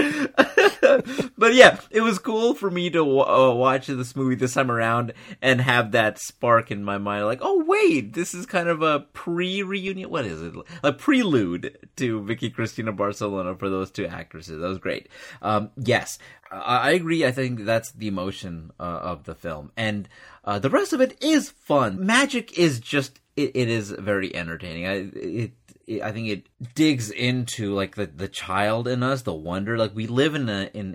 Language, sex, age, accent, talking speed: English, male, 30-49, American, 190 wpm